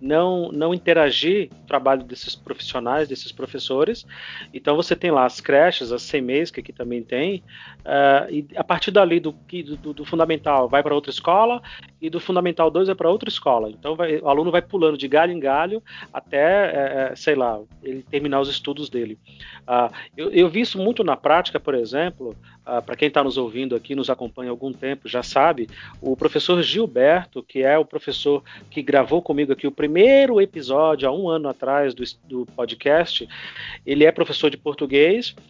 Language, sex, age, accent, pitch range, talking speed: Portuguese, male, 40-59, Brazilian, 135-190 Hz, 190 wpm